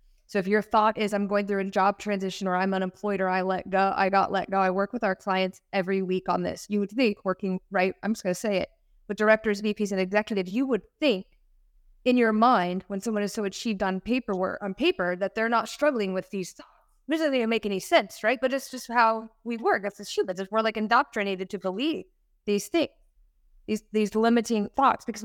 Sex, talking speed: female, 225 wpm